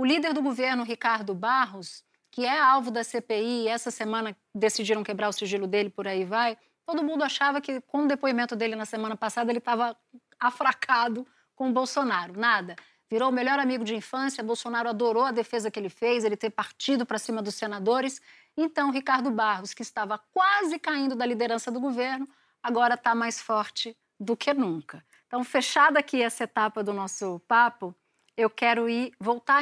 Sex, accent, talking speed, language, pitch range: female, Brazilian, 180 wpm, Portuguese, 210-260 Hz